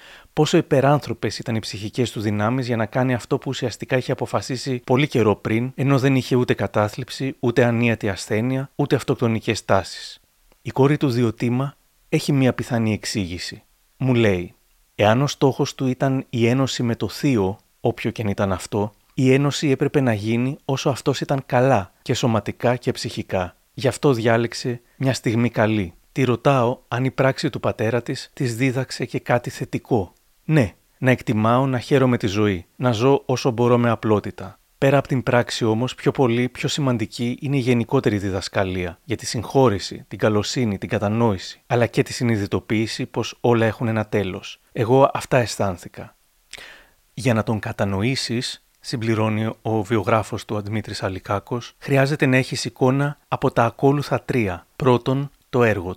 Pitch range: 110-135 Hz